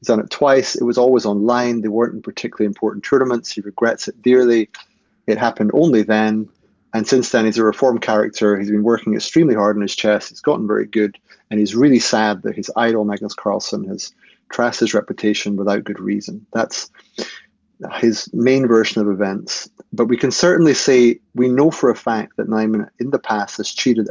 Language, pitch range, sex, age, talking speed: English, 105-135 Hz, male, 30-49, 200 wpm